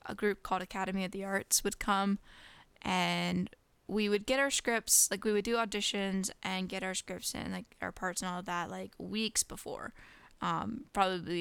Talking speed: 195 wpm